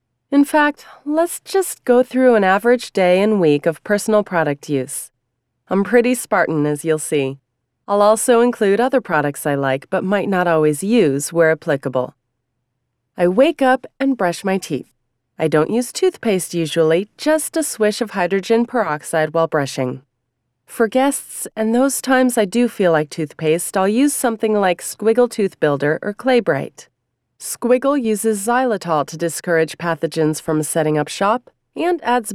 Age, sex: 30-49, female